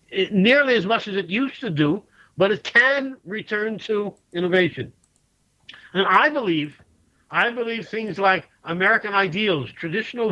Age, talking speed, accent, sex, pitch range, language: 60-79, 145 wpm, American, male, 175-230 Hz, English